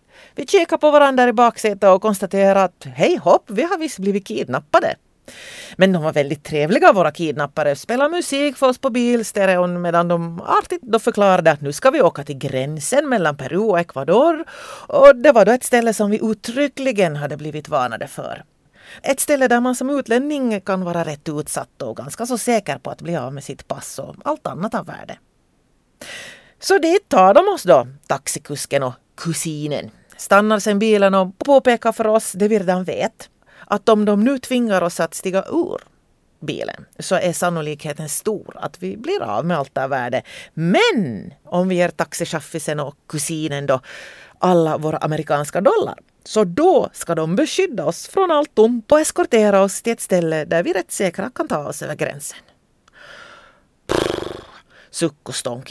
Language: Swedish